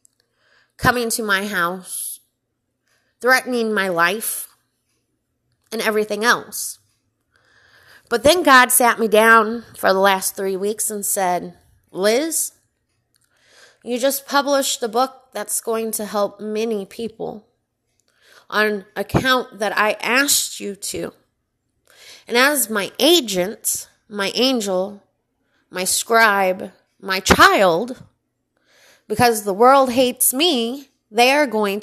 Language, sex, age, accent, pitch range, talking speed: English, female, 20-39, American, 200-255 Hz, 115 wpm